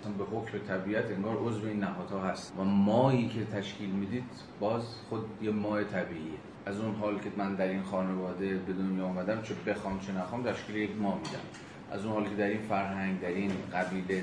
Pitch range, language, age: 95-110 Hz, Persian, 30-49